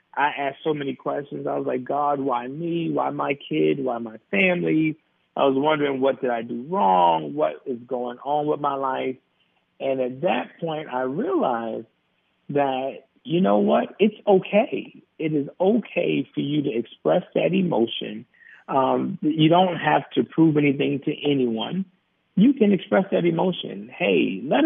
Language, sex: English, male